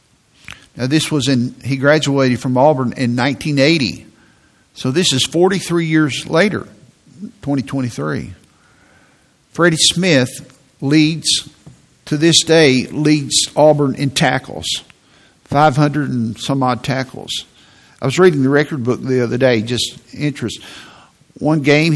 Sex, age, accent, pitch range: male, 50-69, American, 125-150 Hz